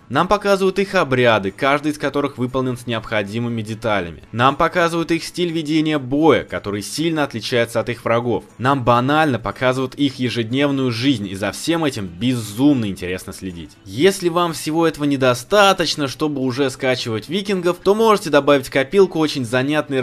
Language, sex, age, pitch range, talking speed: Russian, male, 20-39, 120-165 Hz, 155 wpm